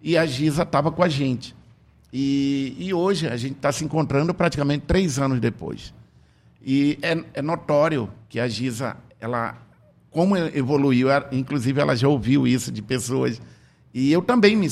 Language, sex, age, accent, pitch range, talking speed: Portuguese, male, 50-69, Brazilian, 120-155 Hz, 165 wpm